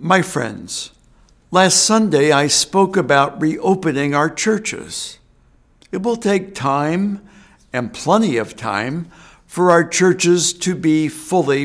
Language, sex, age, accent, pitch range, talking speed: English, male, 60-79, American, 135-170 Hz, 125 wpm